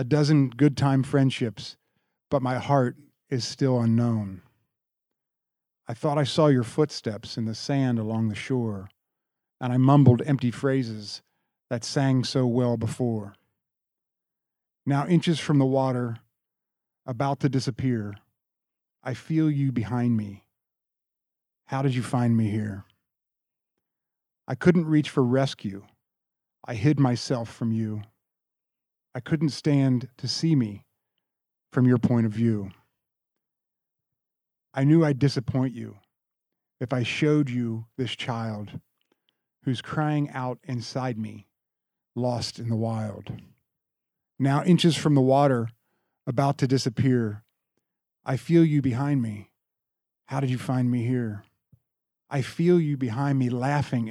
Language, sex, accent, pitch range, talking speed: English, male, American, 115-140 Hz, 130 wpm